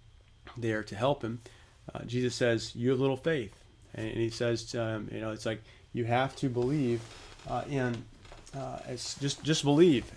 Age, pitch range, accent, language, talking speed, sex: 30-49, 105-125 Hz, American, English, 190 wpm, male